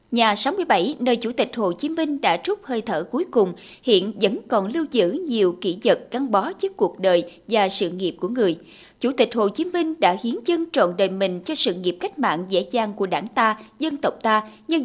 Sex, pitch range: female, 210-310 Hz